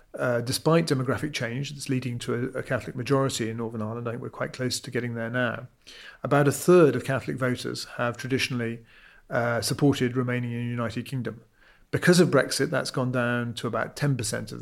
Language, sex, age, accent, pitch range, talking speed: English, male, 40-59, British, 120-140 Hz, 195 wpm